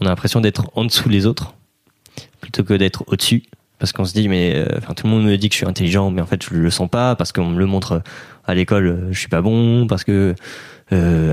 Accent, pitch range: French, 90-115 Hz